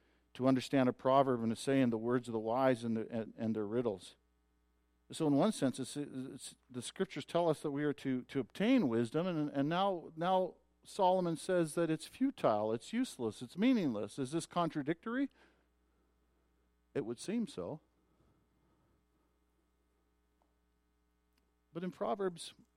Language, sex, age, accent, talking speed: English, male, 50-69, American, 150 wpm